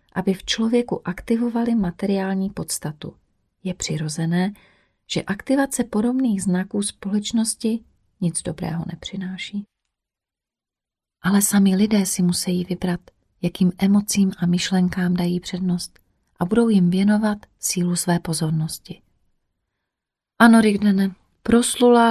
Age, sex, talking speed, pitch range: 30-49, female, 105 wpm, 175-210 Hz